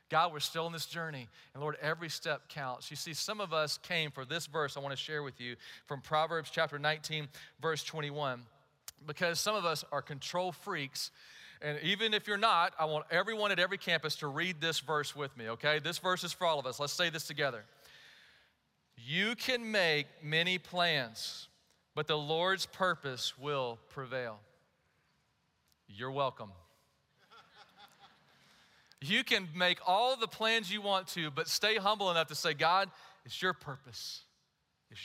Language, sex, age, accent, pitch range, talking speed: English, male, 40-59, American, 145-185 Hz, 170 wpm